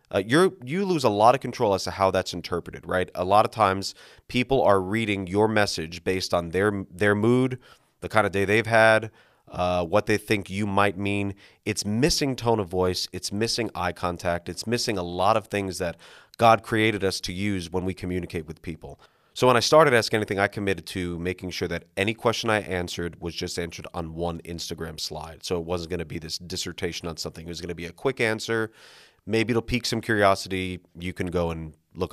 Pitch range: 85-105 Hz